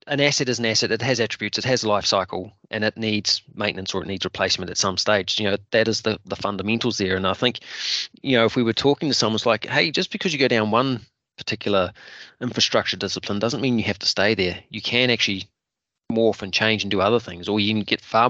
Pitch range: 100-120 Hz